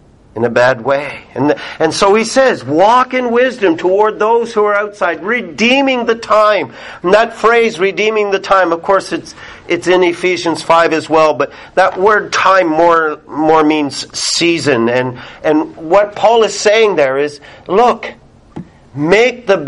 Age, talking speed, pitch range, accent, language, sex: 50-69, 165 wpm, 140-195 Hz, American, English, male